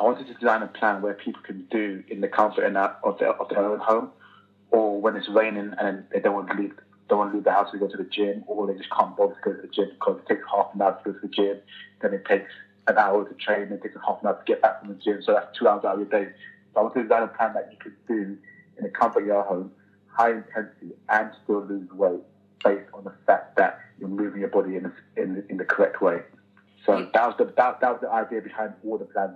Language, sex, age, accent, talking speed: English, male, 30-49, British, 285 wpm